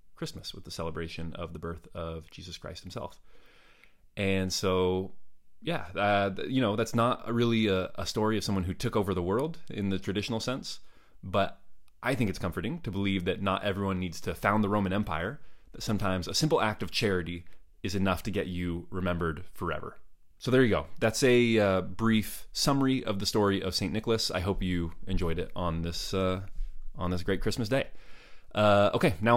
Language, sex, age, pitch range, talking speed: English, male, 30-49, 85-110 Hz, 195 wpm